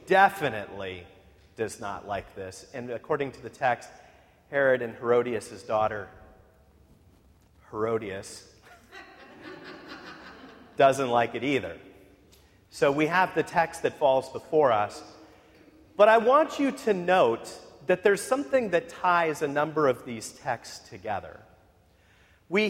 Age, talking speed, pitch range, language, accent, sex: 40-59, 120 wpm, 115-195 Hz, English, American, male